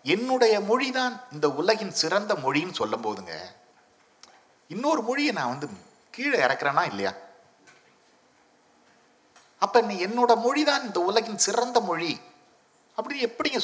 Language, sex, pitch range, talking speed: Tamil, male, 160-245 Hz, 90 wpm